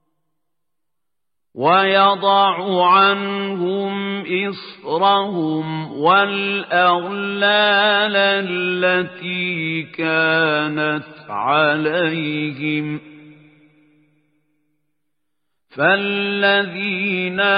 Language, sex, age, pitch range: Arabic, male, 50-69, 150-195 Hz